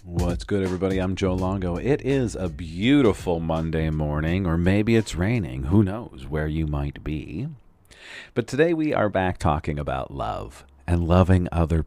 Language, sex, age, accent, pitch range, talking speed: English, male, 40-59, American, 75-95 Hz, 165 wpm